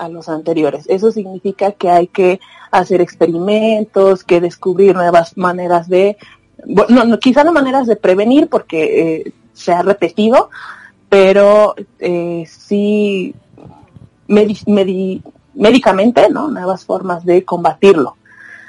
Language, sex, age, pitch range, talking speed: Spanish, female, 30-49, 185-225 Hz, 110 wpm